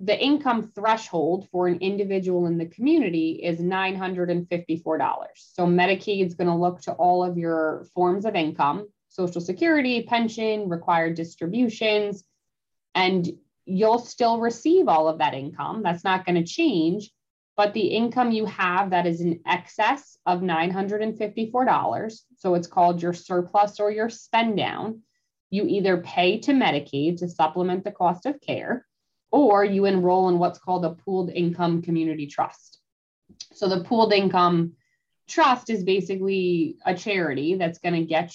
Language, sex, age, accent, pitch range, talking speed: English, female, 20-39, American, 175-215 Hz, 145 wpm